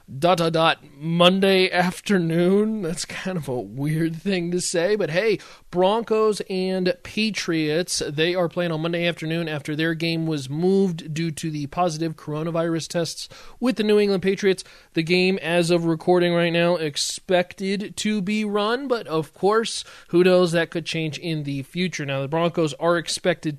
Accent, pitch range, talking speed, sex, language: American, 155-185 Hz, 170 wpm, male, English